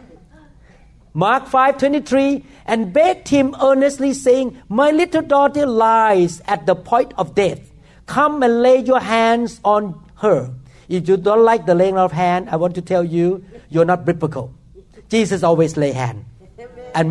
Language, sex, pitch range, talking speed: English, male, 170-265 Hz, 155 wpm